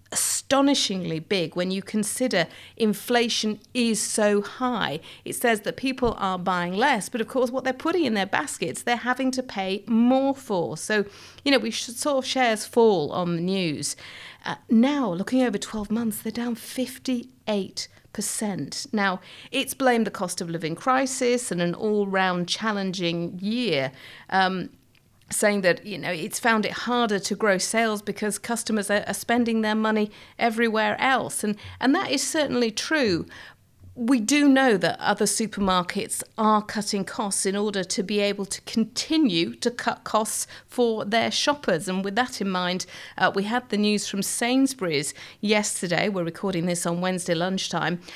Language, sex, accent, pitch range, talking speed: English, female, British, 185-240 Hz, 160 wpm